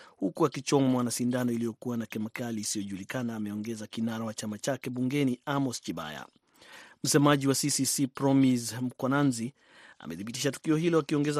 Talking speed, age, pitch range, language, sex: 130 wpm, 30-49, 120-140 Hz, Swahili, male